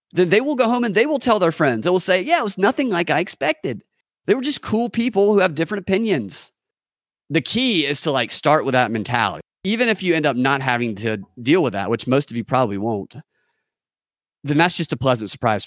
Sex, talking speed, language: male, 240 wpm, English